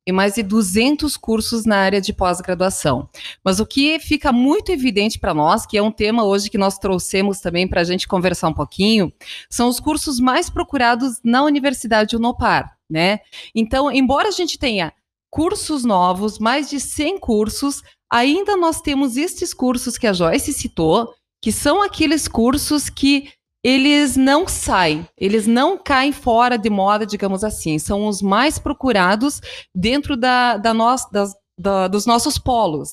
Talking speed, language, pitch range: 165 wpm, Portuguese, 210-280 Hz